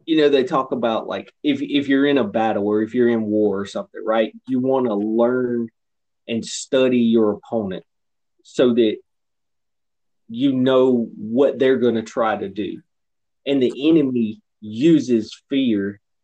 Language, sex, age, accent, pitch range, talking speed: English, male, 20-39, American, 110-130 Hz, 165 wpm